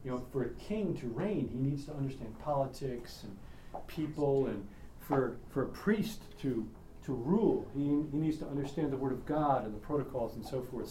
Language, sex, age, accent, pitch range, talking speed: English, male, 40-59, American, 125-200 Hz, 205 wpm